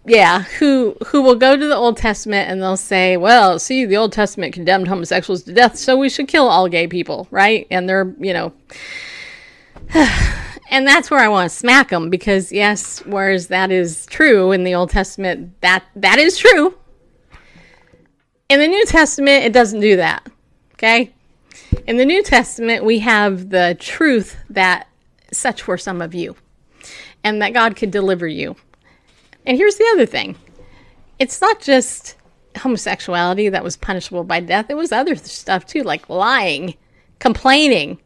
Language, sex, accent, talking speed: English, female, American, 165 wpm